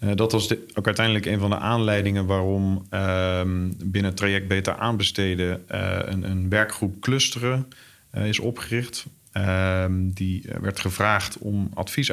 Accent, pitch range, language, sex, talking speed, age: Dutch, 95-110 Hz, Dutch, male, 155 wpm, 40-59